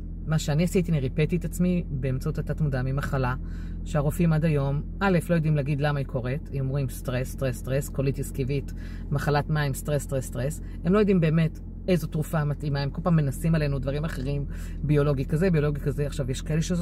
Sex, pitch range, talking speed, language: female, 135-185 Hz, 195 wpm, Hebrew